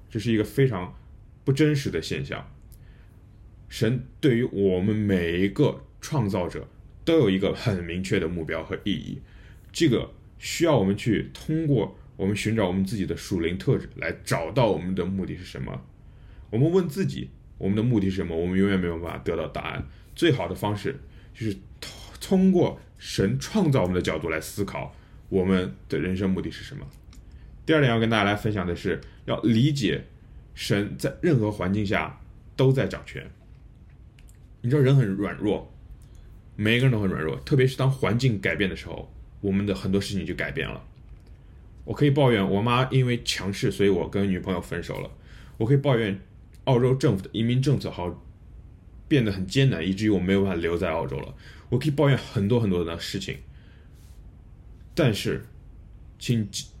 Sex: male